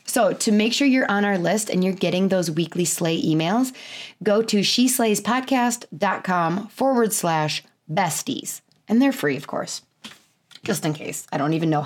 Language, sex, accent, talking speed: English, female, American, 165 wpm